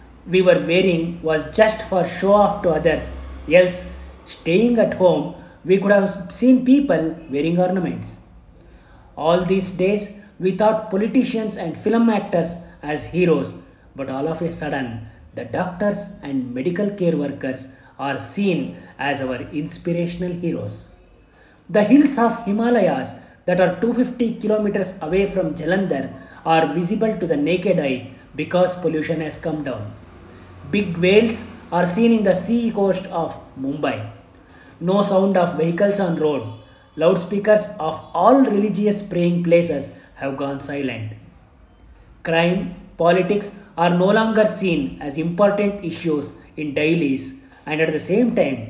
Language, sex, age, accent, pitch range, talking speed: Kannada, male, 30-49, native, 130-195 Hz, 140 wpm